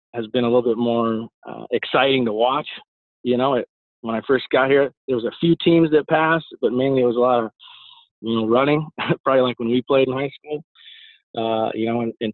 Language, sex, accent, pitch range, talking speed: English, male, American, 115-135 Hz, 235 wpm